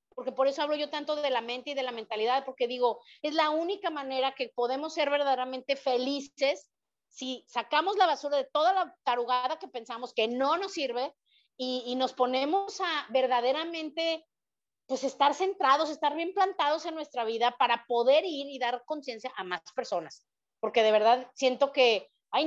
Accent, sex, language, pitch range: Mexican, female, Spanish, 235-290 Hz